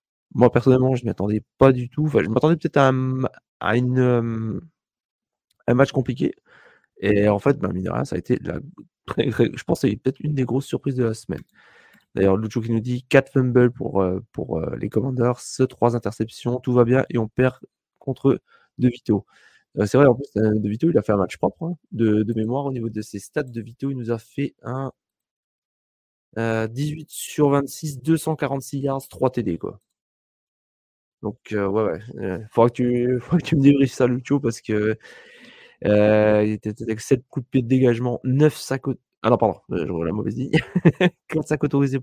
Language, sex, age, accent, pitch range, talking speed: French, male, 20-39, French, 110-135 Hz, 180 wpm